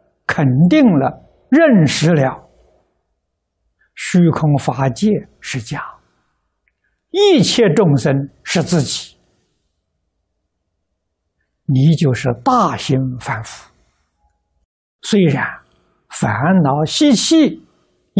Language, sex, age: Chinese, male, 60-79